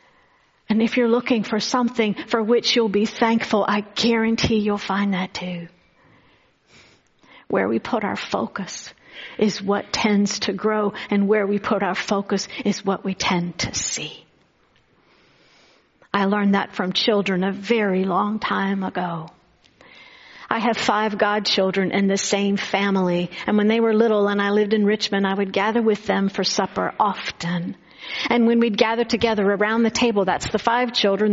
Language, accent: English, American